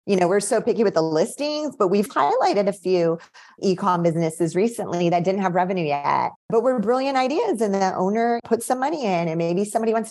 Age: 30-49